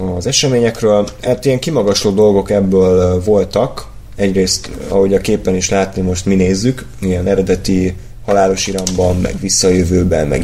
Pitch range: 95-125 Hz